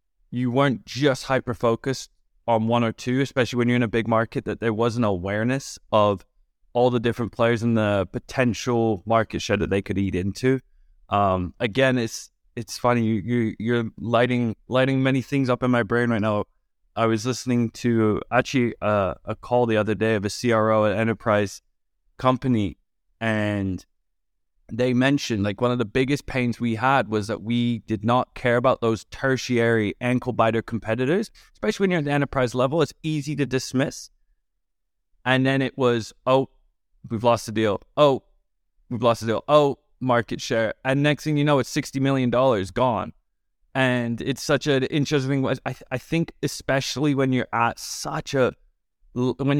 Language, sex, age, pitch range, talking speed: English, male, 20-39, 110-130 Hz, 180 wpm